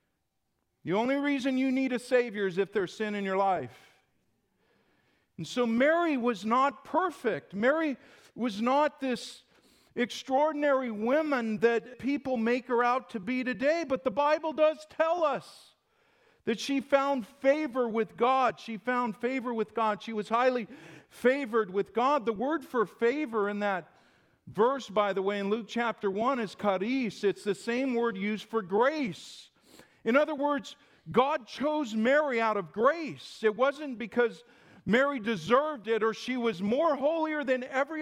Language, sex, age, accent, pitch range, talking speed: English, male, 50-69, American, 215-270 Hz, 160 wpm